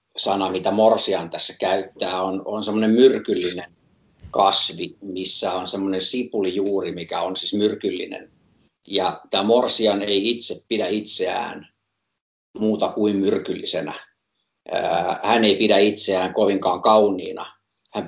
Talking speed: 115 wpm